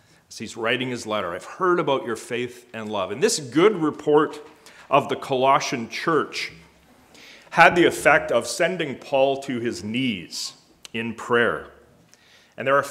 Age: 40-59